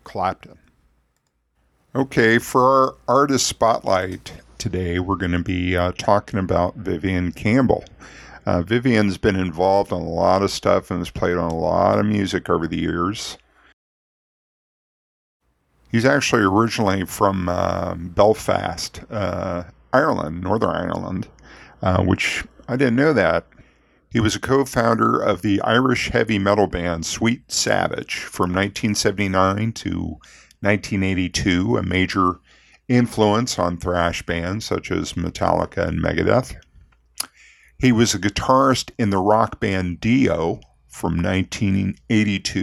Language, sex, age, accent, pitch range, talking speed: English, male, 50-69, American, 90-115 Hz, 125 wpm